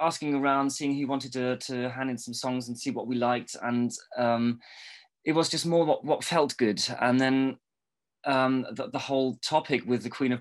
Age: 20-39